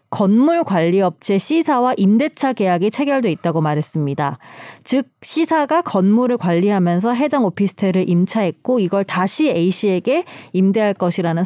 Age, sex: 20-39, female